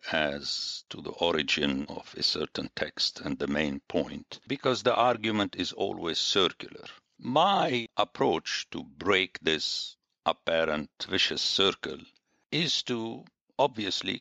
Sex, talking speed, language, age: male, 125 wpm, English, 60-79